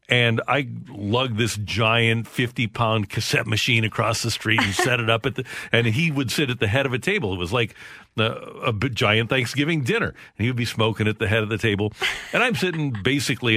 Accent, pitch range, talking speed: American, 100-125 Hz, 220 wpm